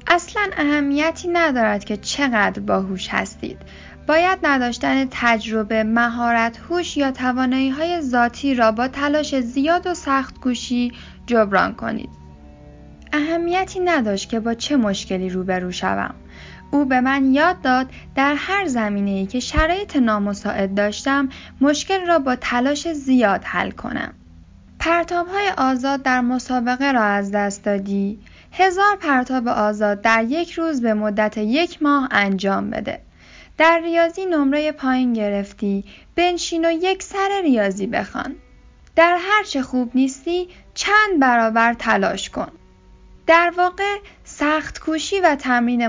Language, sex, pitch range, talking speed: Persian, female, 225-325 Hz, 125 wpm